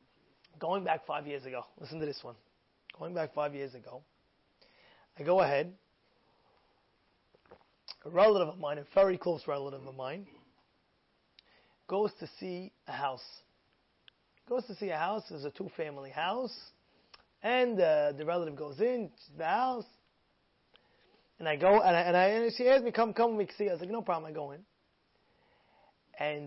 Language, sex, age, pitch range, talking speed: English, male, 30-49, 150-210 Hz, 170 wpm